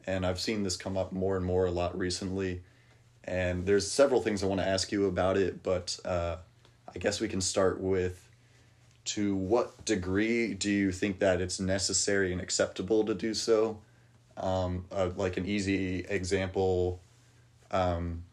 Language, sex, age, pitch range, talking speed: English, male, 30-49, 90-105 Hz, 170 wpm